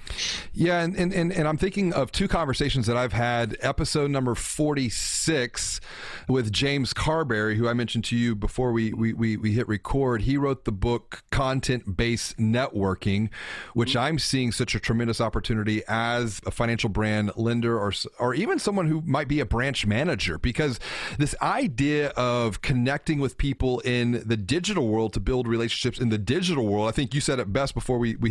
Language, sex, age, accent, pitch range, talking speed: English, male, 30-49, American, 110-140 Hz, 180 wpm